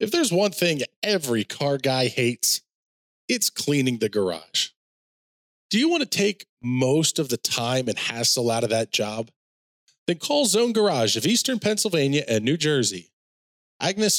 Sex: male